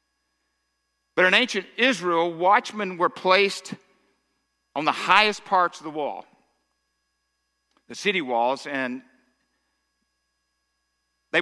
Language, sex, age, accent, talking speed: English, male, 50-69, American, 100 wpm